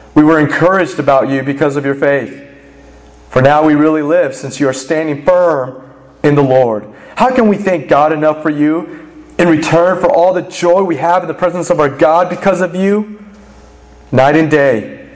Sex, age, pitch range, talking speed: male, 30-49, 140-215 Hz, 200 wpm